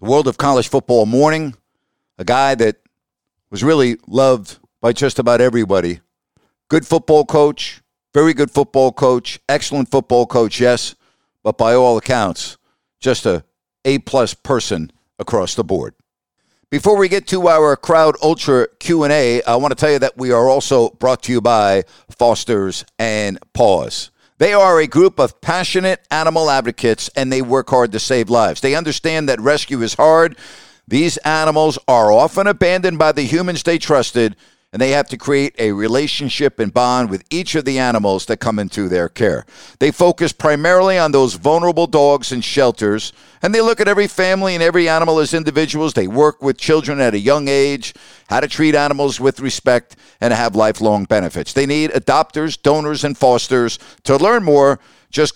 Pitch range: 120-155 Hz